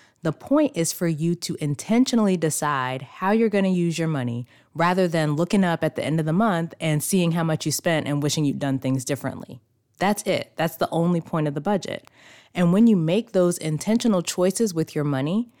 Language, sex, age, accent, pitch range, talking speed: English, female, 20-39, American, 145-180 Hz, 210 wpm